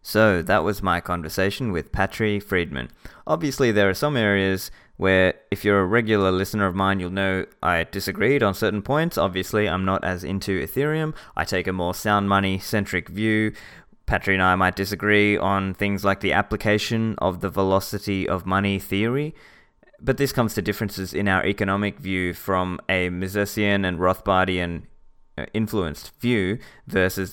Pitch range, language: 95-110 Hz, English